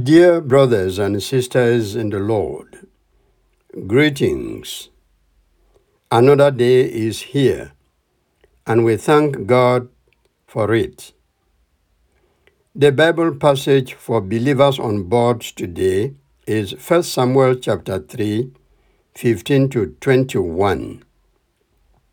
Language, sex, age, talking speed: English, male, 60-79, 90 wpm